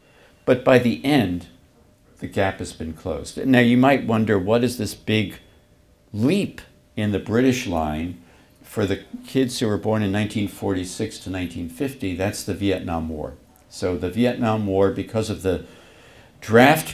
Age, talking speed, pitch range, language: 60-79, 155 wpm, 90-120 Hz, English